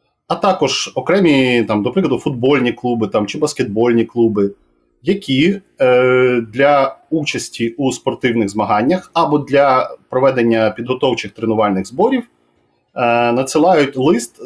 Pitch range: 115-150 Hz